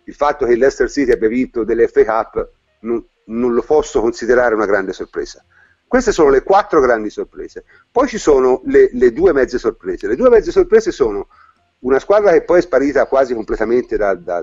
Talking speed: 185 wpm